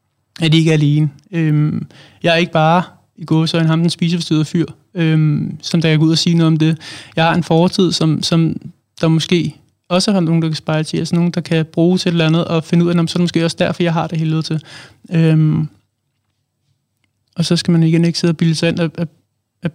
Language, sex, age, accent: Danish, male, 20-39, native